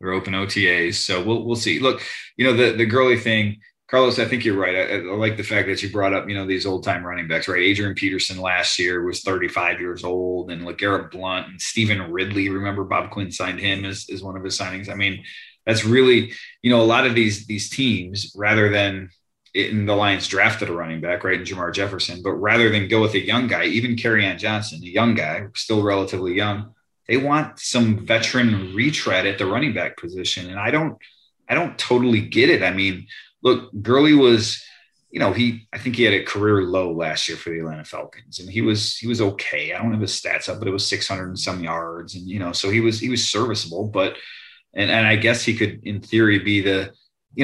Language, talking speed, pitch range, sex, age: English, 235 wpm, 95-115 Hz, male, 30-49